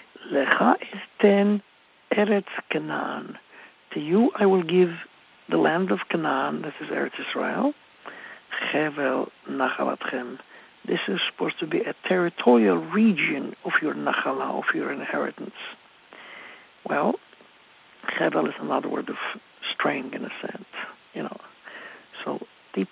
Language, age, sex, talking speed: English, 60-79, male, 125 wpm